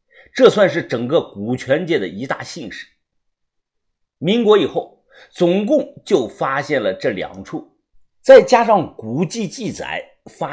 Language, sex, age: Chinese, male, 50-69